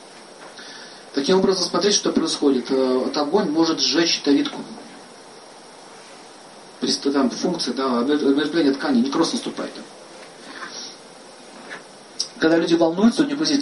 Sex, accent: male, native